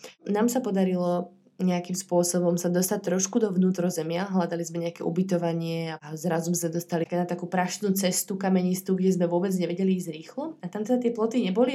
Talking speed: 180 wpm